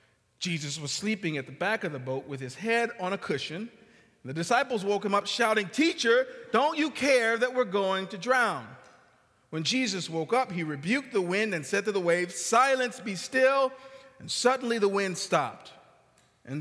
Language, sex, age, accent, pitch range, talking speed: English, male, 40-59, American, 140-210 Hz, 190 wpm